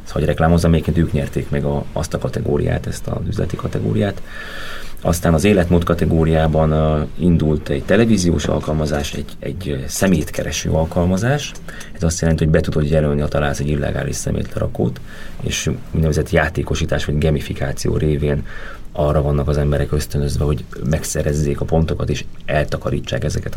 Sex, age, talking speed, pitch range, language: male, 30-49, 140 wpm, 75-85 Hz, Hungarian